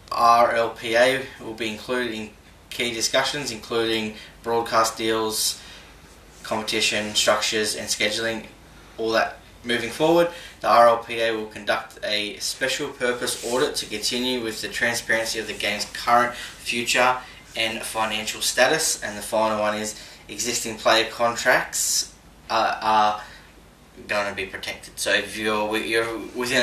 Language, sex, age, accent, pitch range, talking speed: English, male, 10-29, Australian, 105-120 Hz, 130 wpm